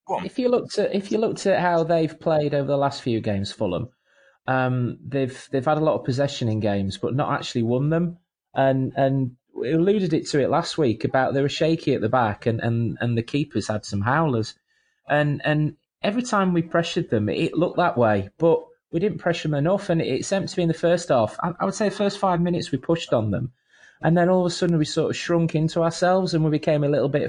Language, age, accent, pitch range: English, 30-49, British, 130-170 Hz